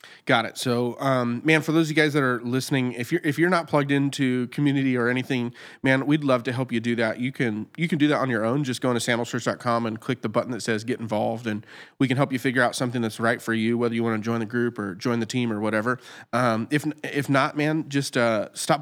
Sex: male